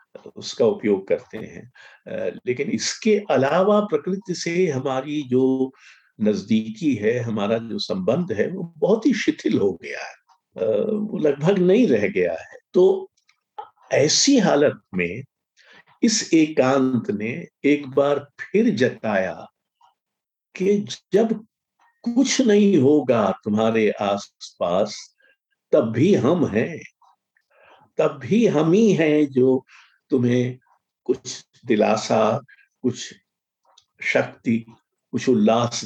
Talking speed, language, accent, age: 110 wpm, Hindi, native, 50-69